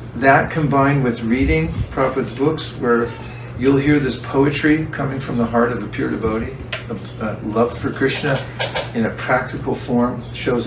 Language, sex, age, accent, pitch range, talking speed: English, male, 50-69, American, 115-135 Hz, 165 wpm